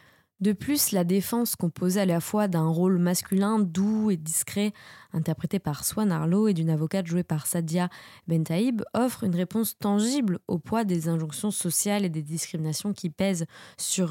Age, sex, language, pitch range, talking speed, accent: 20-39, female, French, 165-215 Hz, 170 wpm, French